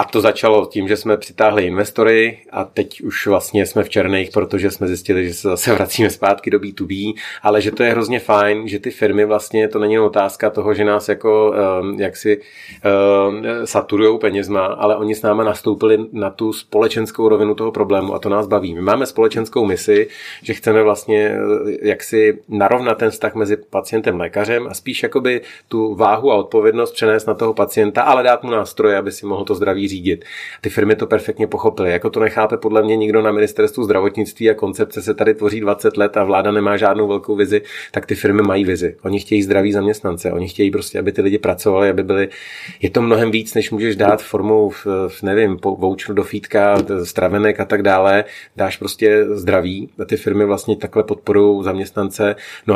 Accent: native